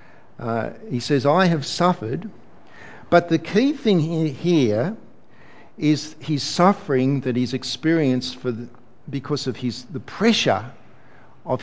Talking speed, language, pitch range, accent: 130 wpm, English, 130-190 Hz, Australian